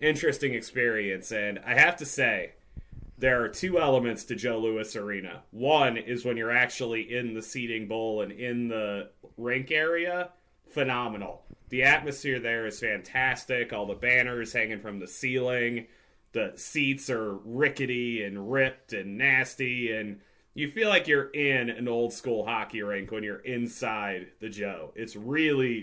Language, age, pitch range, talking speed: English, 30-49, 110-135 Hz, 155 wpm